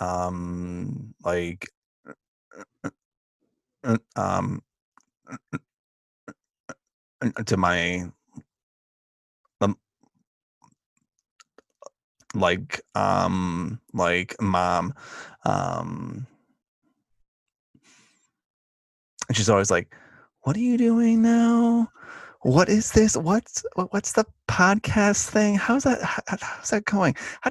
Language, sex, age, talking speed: English, male, 20-39, 80 wpm